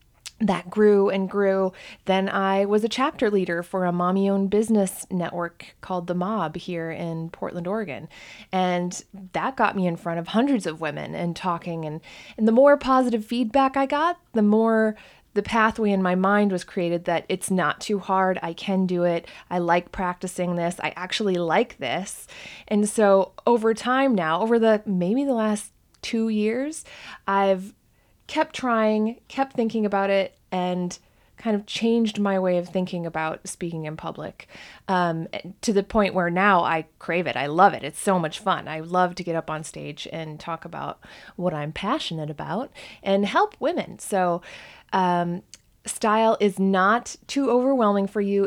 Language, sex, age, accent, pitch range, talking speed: English, female, 20-39, American, 180-225 Hz, 175 wpm